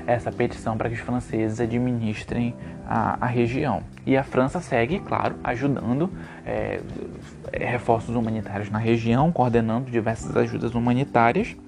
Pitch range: 110-130 Hz